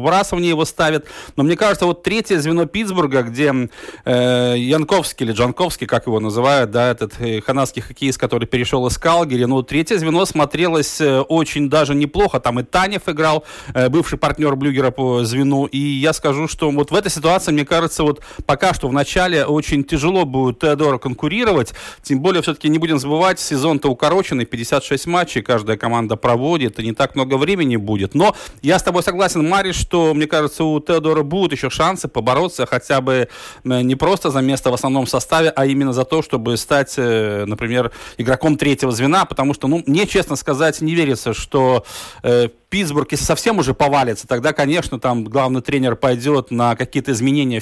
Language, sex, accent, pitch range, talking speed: Russian, male, native, 125-155 Hz, 180 wpm